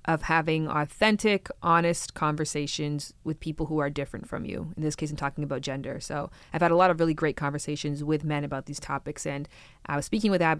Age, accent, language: 20-39, American, English